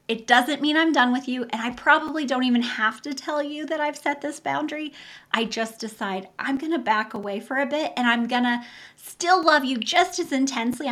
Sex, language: female, English